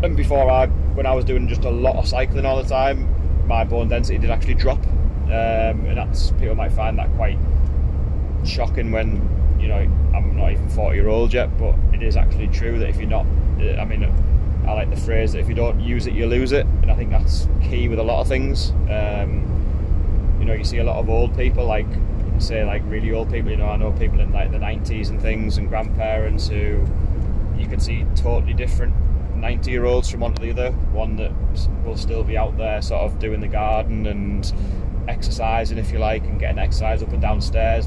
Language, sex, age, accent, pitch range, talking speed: English, male, 20-39, British, 70-80 Hz, 225 wpm